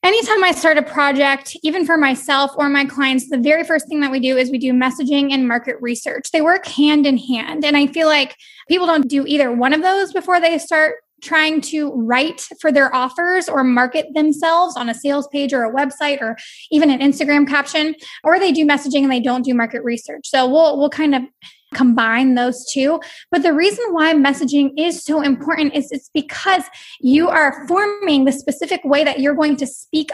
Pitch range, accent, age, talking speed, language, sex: 270-320 Hz, American, 20-39, 210 wpm, English, female